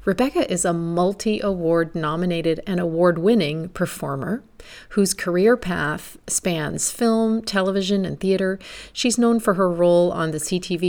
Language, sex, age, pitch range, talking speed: English, female, 40-59, 165-195 Hz, 130 wpm